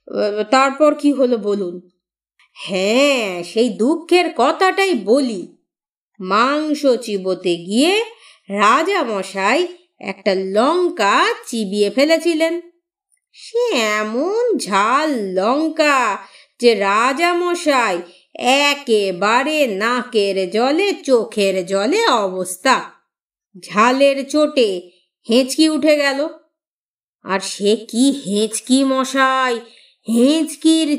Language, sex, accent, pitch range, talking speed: Bengali, female, native, 220-340 Hz, 55 wpm